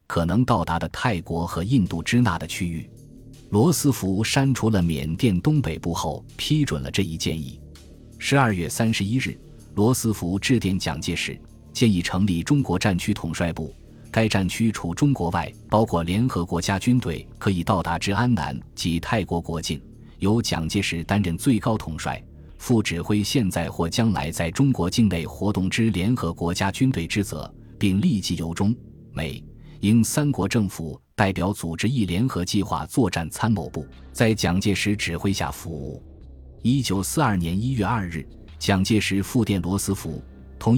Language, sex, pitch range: Chinese, male, 85-115 Hz